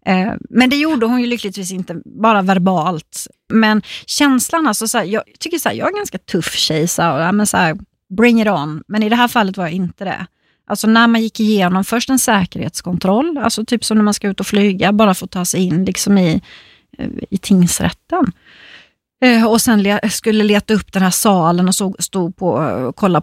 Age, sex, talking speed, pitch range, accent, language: 30-49, female, 205 wpm, 180-220 Hz, native, Swedish